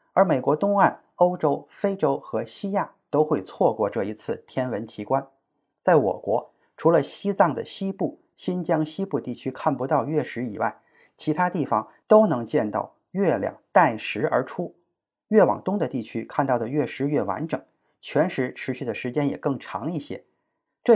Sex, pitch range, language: male, 130-175 Hz, Chinese